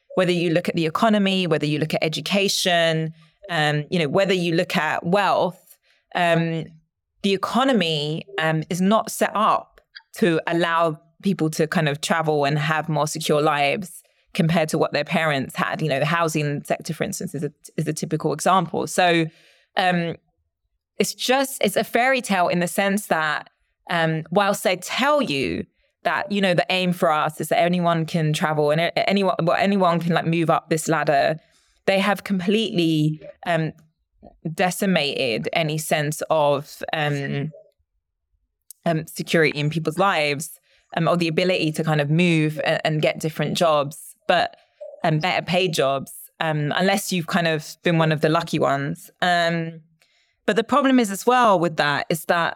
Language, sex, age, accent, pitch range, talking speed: English, female, 20-39, British, 155-185 Hz, 170 wpm